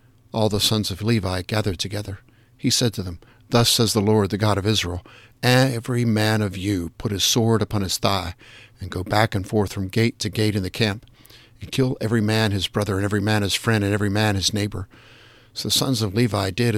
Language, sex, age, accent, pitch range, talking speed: English, male, 50-69, American, 105-120 Hz, 225 wpm